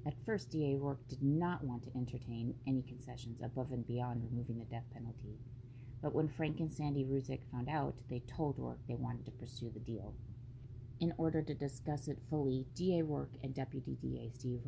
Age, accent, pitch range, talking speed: 30-49, American, 120-145 Hz, 190 wpm